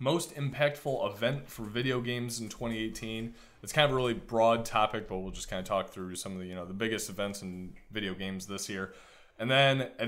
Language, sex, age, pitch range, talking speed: English, male, 20-39, 100-135 Hz, 215 wpm